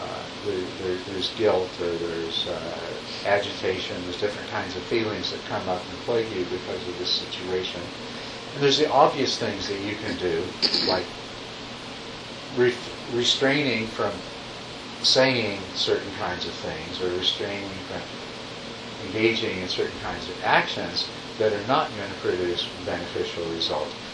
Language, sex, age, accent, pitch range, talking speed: English, male, 50-69, American, 100-120 Hz, 145 wpm